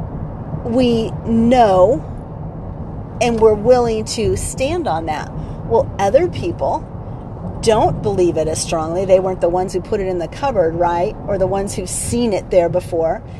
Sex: female